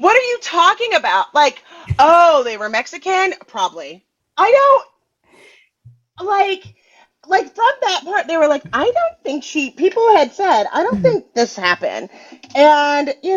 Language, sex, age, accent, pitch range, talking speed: English, female, 30-49, American, 185-290 Hz, 155 wpm